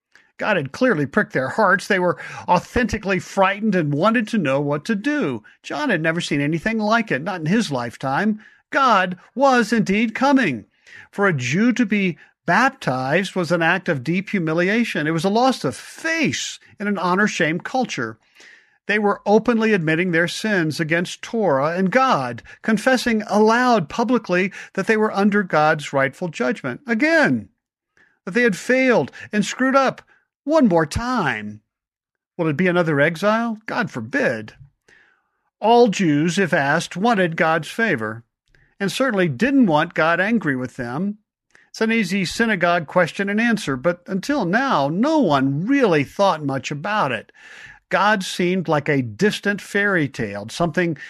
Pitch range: 160-230 Hz